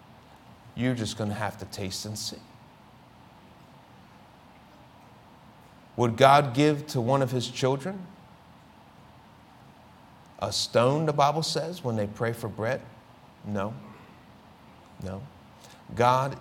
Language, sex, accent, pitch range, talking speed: English, male, American, 115-165 Hz, 110 wpm